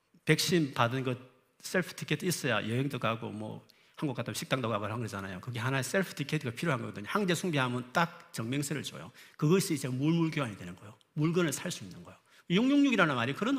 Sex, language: male, Korean